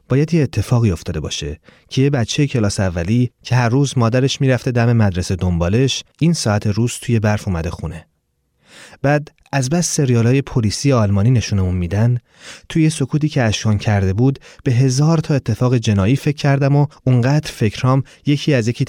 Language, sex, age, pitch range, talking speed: Persian, male, 30-49, 105-145 Hz, 170 wpm